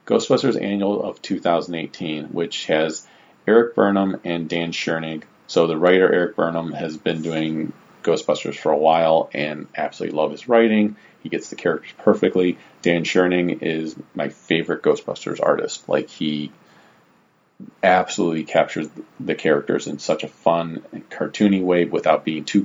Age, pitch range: 40-59, 85-100 Hz